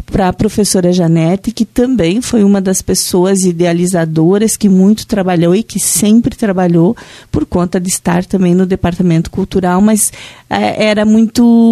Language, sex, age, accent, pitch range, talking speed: Portuguese, female, 40-59, Brazilian, 180-220 Hz, 155 wpm